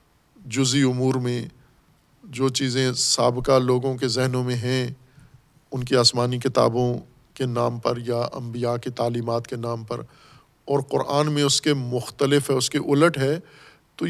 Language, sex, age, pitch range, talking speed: Urdu, male, 50-69, 125-150 Hz, 160 wpm